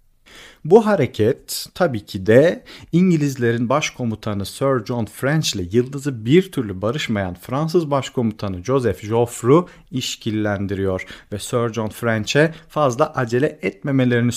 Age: 40-59